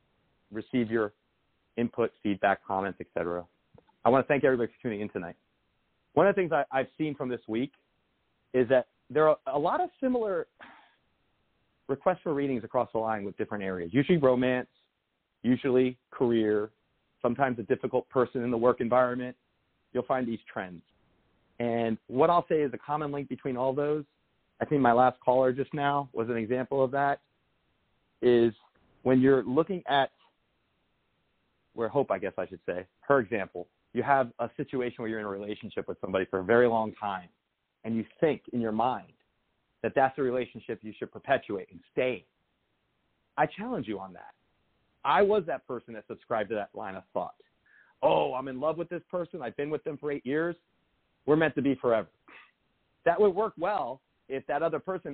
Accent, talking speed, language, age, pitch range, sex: American, 185 wpm, English, 40-59, 115-150 Hz, male